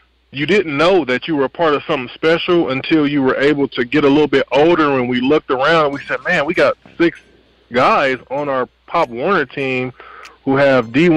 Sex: male